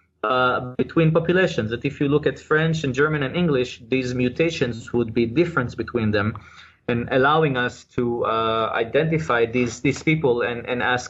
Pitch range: 125-165 Hz